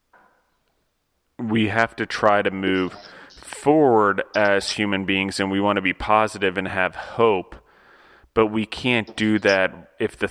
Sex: male